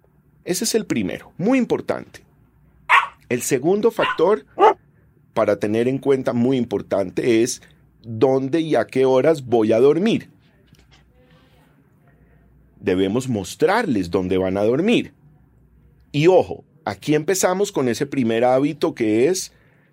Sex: male